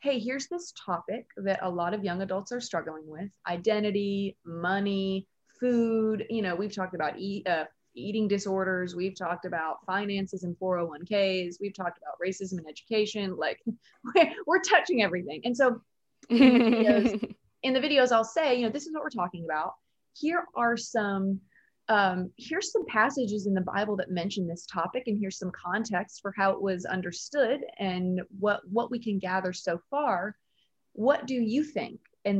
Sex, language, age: female, English, 30-49